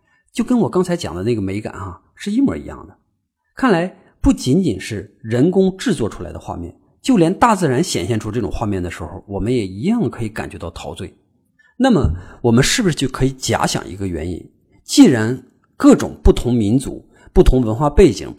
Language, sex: Chinese, male